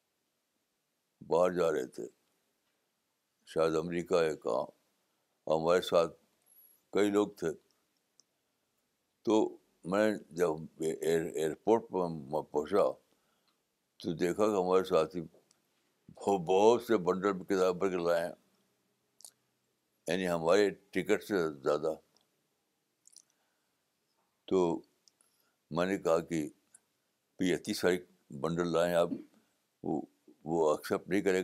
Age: 60-79